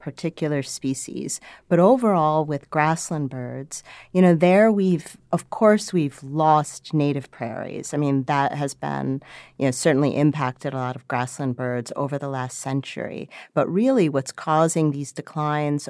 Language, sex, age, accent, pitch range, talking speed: English, female, 40-59, American, 135-160 Hz, 155 wpm